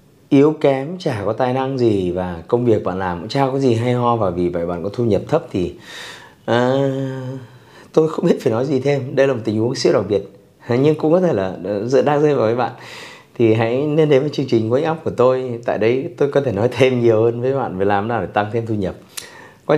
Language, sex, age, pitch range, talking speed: Vietnamese, male, 20-39, 100-135 Hz, 260 wpm